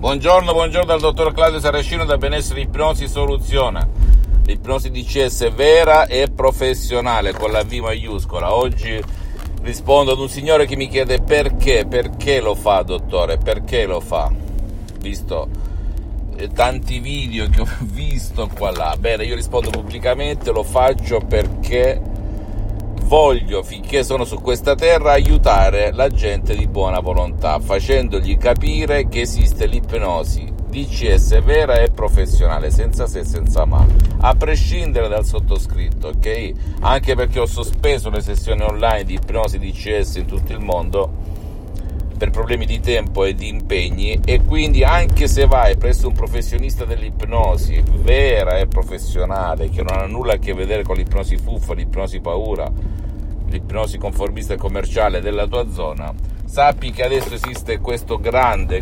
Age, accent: 50-69, native